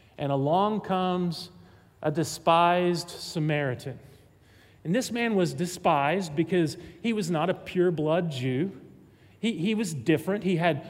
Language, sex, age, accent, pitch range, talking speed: English, male, 40-59, American, 140-185 Hz, 130 wpm